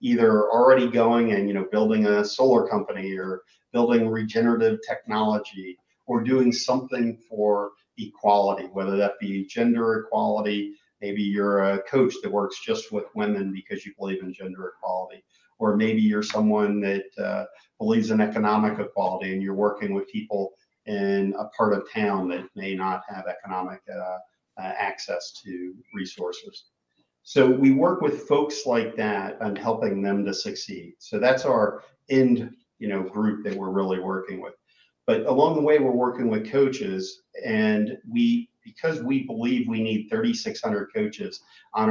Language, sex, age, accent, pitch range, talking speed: English, male, 50-69, American, 95-130 Hz, 160 wpm